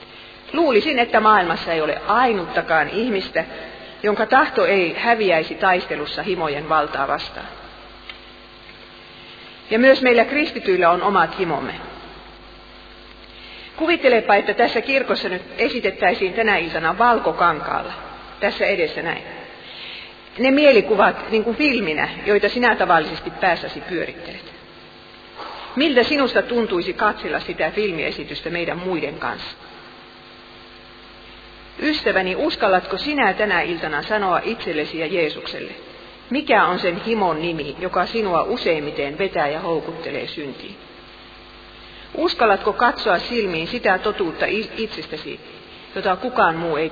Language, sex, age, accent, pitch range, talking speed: Finnish, female, 40-59, native, 170-245 Hz, 105 wpm